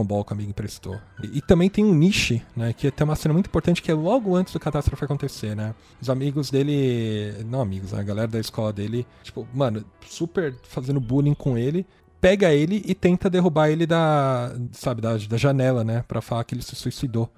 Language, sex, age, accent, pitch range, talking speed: Portuguese, male, 20-39, Brazilian, 120-160 Hz, 210 wpm